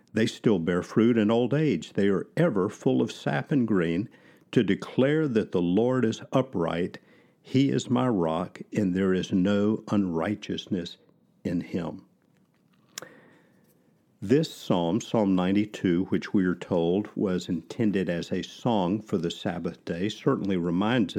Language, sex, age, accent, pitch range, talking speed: English, male, 50-69, American, 90-115 Hz, 145 wpm